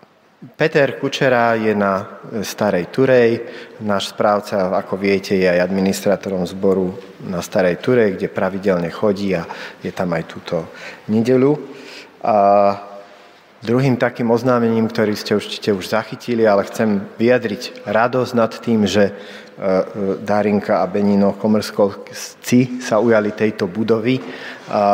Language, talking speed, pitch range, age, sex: Slovak, 120 wpm, 100-115 Hz, 30-49, male